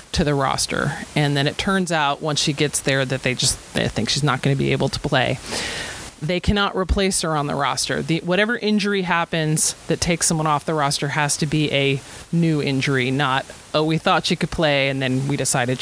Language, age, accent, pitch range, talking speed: English, 30-49, American, 145-180 Hz, 225 wpm